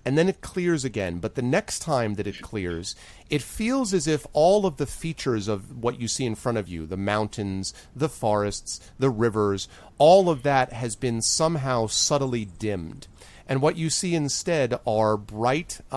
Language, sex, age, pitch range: English, male, 30-49, 105-140 Hz